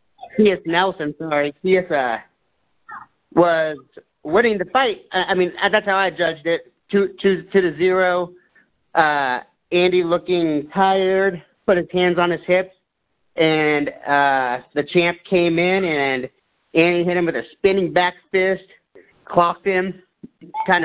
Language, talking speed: English, 145 wpm